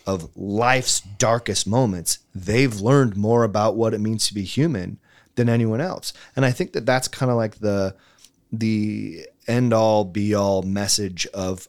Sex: male